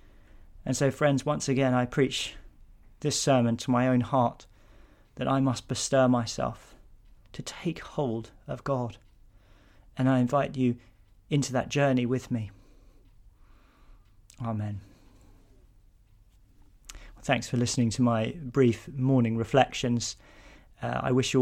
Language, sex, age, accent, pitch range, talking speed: English, male, 40-59, British, 105-130 Hz, 125 wpm